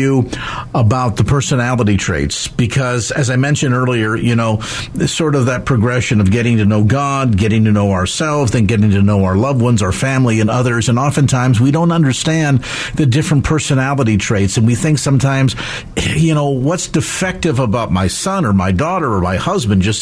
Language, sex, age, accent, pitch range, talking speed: English, male, 50-69, American, 110-140 Hz, 185 wpm